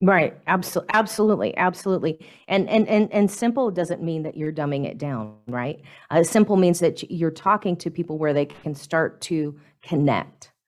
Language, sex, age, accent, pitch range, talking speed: English, female, 40-59, American, 145-180 Hz, 170 wpm